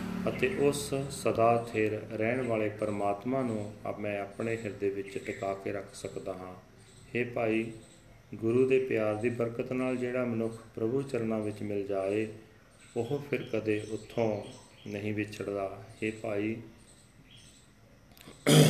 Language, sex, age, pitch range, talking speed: Punjabi, male, 40-59, 100-120 Hz, 130 wpm